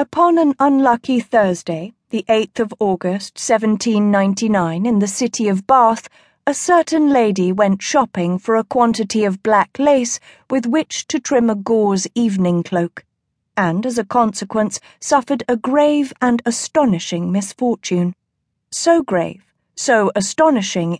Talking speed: 135 wpm